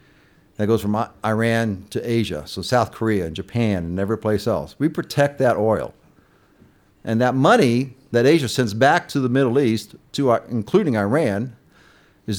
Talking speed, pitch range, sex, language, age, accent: 170 wpm, 100-130 Hz, male, English, 60-79, American